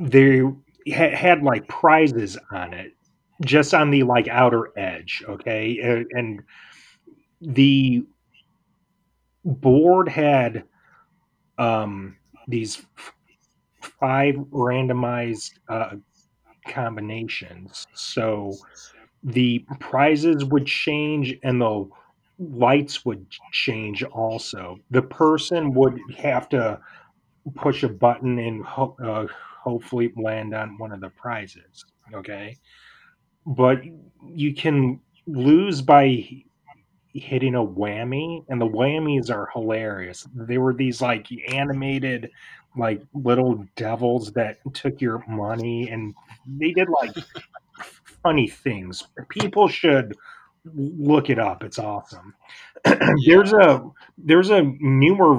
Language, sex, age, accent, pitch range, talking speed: English, male, 30-49, American, 115-145 Hz, 105 wpm